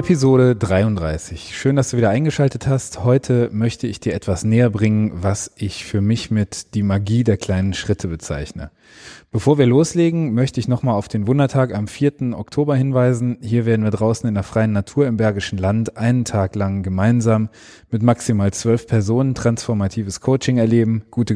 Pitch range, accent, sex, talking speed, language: 100-125 Hz, German, male, 175 wpm, German